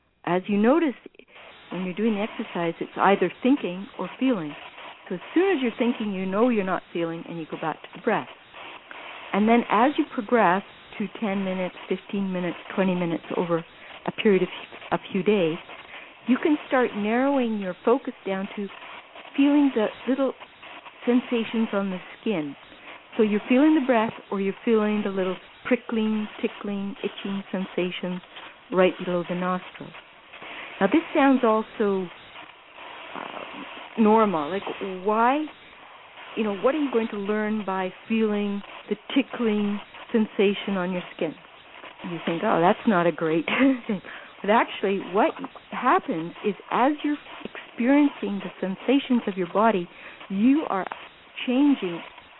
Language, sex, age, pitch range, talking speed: English, female, 60-79, 190-250 Hz, 150 wpm